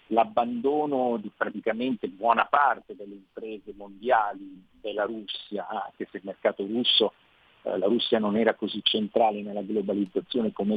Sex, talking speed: male, 135 wpm